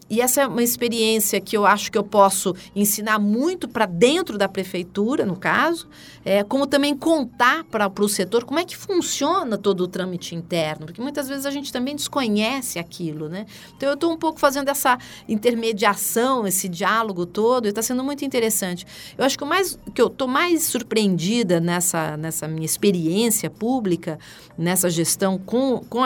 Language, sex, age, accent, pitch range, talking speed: Portuguese, female, 50-69, Brazilian, 180-245 Hz, 180 wpm